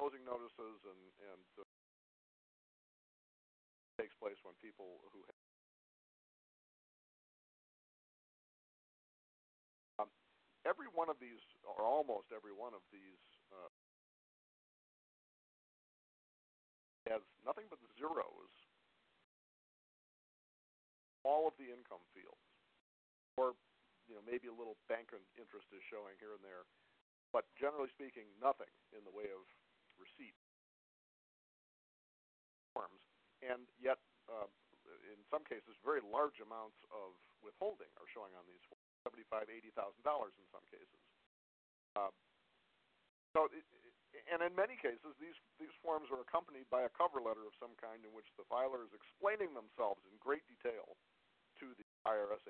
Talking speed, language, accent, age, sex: 125 wpm, English, American, 50-69, male